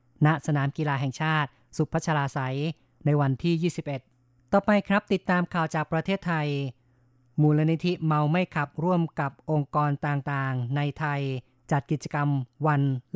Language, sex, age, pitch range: Thai, female, 20-39, 140-160 Hz